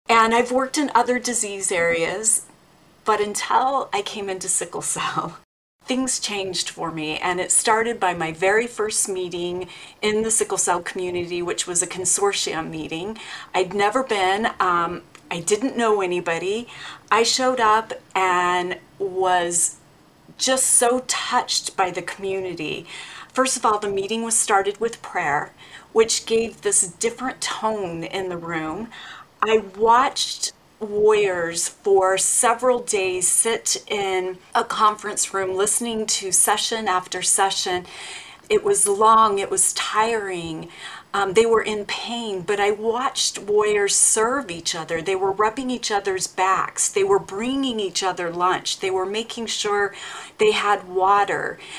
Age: 40-59